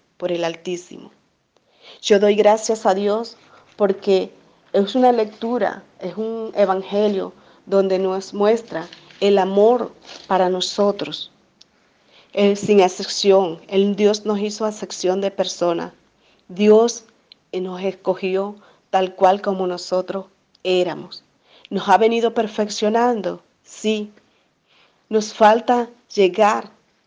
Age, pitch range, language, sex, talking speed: 40-59, 185-215 Hz, Spanish, female, 105 wpm